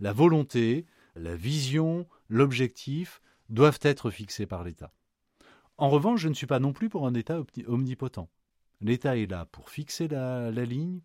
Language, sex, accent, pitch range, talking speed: French, male, French, 90-140 Hz, 165 wpm